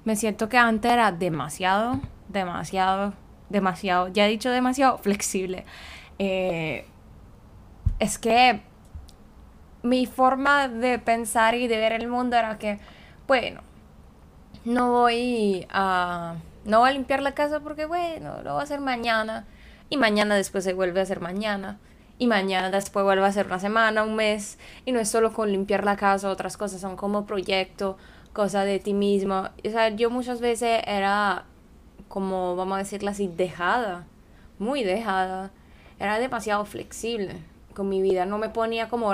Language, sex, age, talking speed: Spanish, female, 20-39, 160 wpm